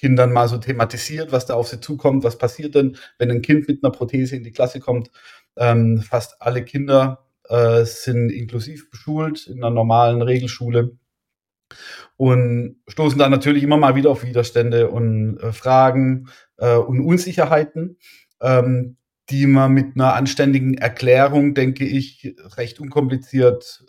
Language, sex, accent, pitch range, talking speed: German, male, German, 120-140 Hz, 140 wpm